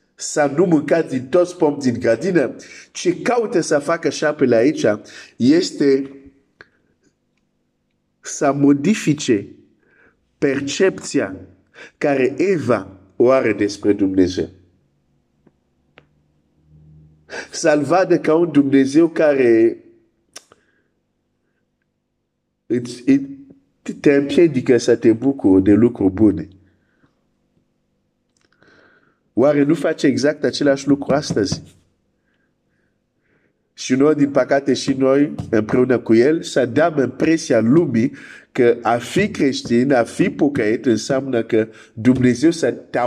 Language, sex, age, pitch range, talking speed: Romanian, male, 50-69, 110-155 Hz, 100 wpm